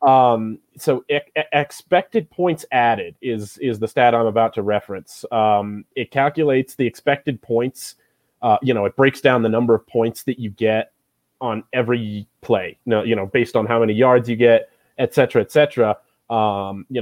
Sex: male